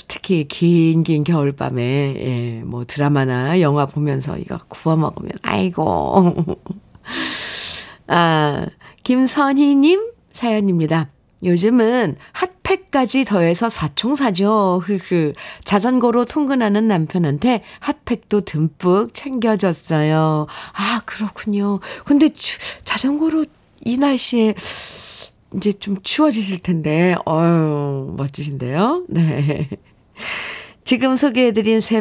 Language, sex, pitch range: Korean, female, 160-230 Hz